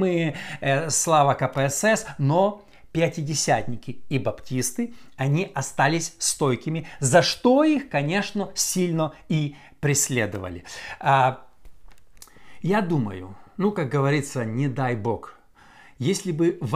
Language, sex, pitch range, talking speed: Russian, male, 130-180 Hz, 95 wpm